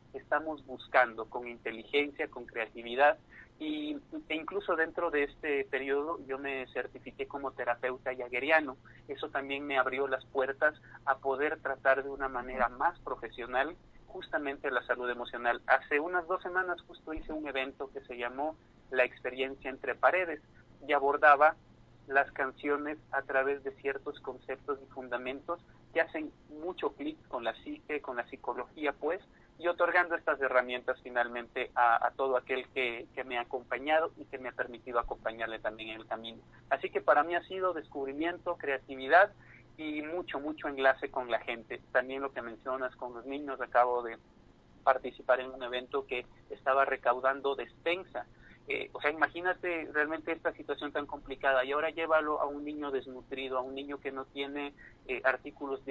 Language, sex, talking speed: Spanish, male, 165 wpm